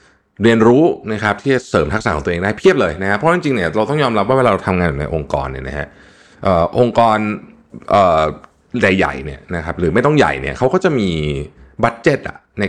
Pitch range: 80-120 Hz